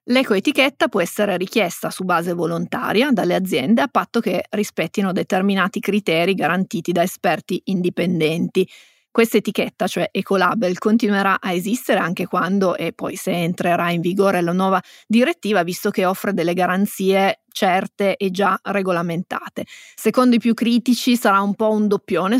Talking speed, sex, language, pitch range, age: 145 wpm, female, Italian, 185-225 Hz, 30-49